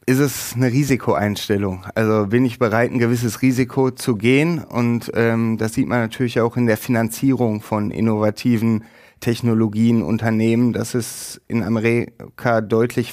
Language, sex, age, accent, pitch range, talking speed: German, male, 30-49, German, 115-135 Hz, 145 wpm